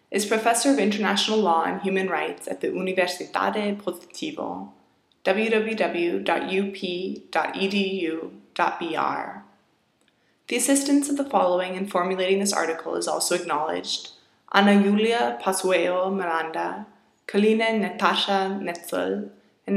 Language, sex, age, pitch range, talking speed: English, female, 20-39, 175-215 Hz, 100 wpm